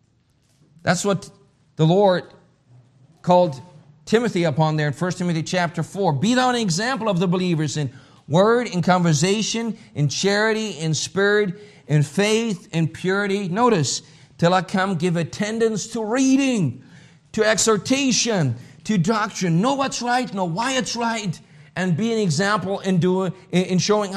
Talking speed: 145 wpm